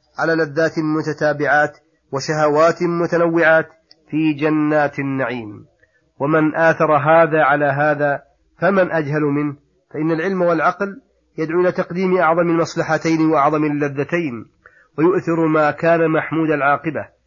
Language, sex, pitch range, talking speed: Arabic, male, 150-170 Hz, 110 wpm